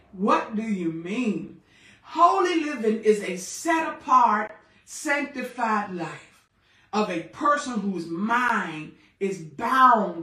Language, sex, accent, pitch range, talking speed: English, female, American, 205-290 Hz, 110 wpm